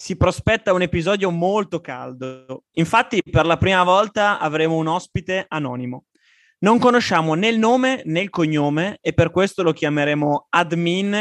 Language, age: Italian, 20-39